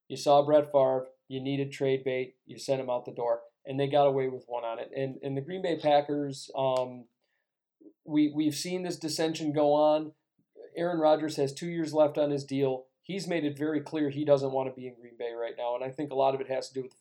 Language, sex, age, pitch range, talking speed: English, male, 40-59, 135-150 Hz, 260 wpm